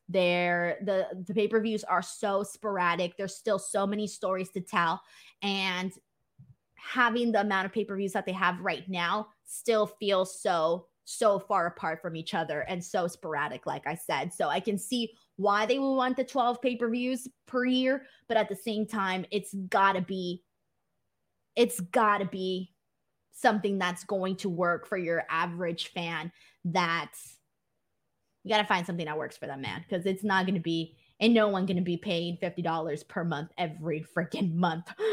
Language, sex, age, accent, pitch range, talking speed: English, female, 20-39, American, 185-230 Hz, 180 wpm